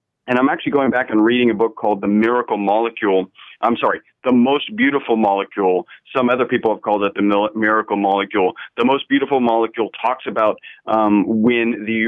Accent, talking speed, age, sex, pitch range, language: American, 185 wpm, 40-59, male, 100-115 Hz, English